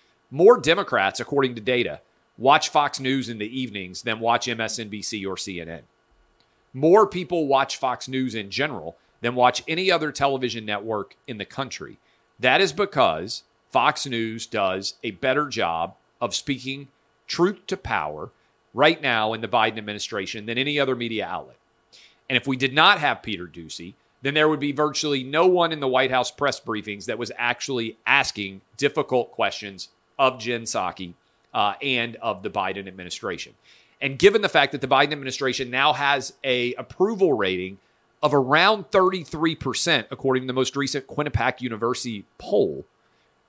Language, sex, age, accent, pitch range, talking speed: English, male, 40-59, American, 115-150 Hz, 160 wpm